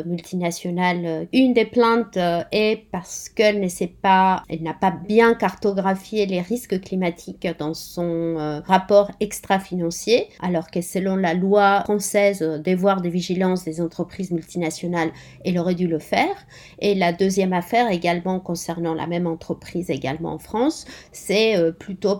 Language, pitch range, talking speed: French, 170-205 Hz, 145 wpm